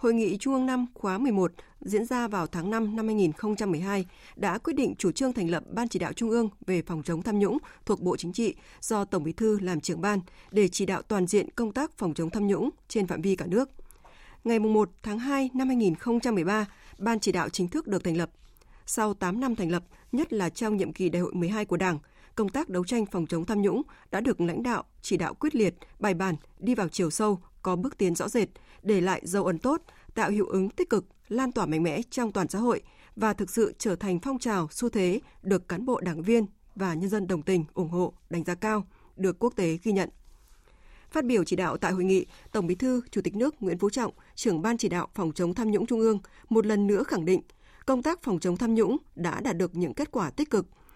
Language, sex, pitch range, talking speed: Vietnamese, female, 180-230 Hz, 240 wpm